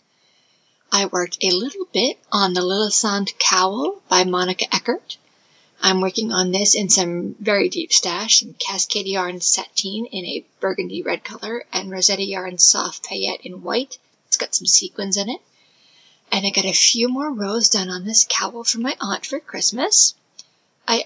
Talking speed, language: 170 wpm, English